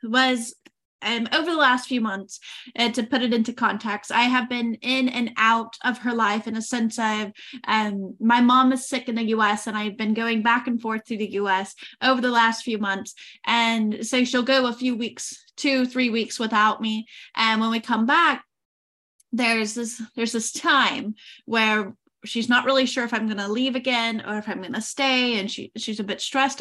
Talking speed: 210 wpm